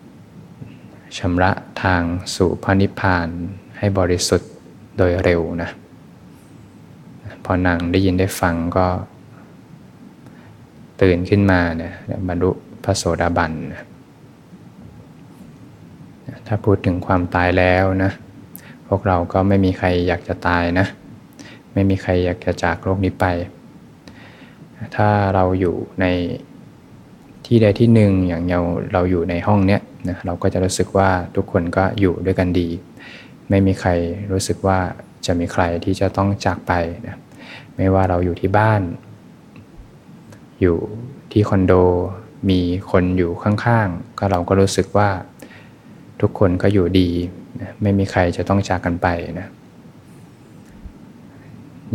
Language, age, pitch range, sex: Thai, 20-39, 90-100 Hz, male